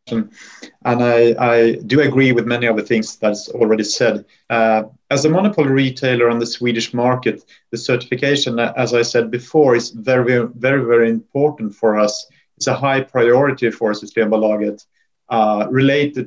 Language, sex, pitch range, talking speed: English, male, 110-130 Hz, 160 wpm